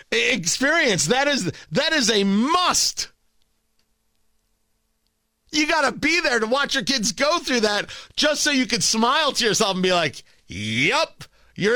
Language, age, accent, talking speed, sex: English, 50-69, American, 160 wpm, male